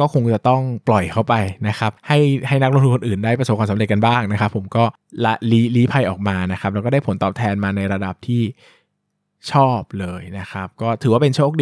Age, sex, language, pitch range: 20-39, male, Thai, 100-125 Hz